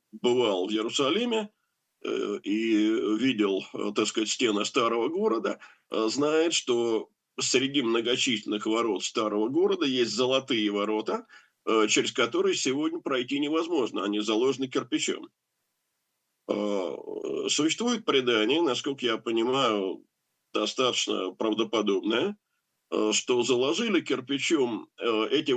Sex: male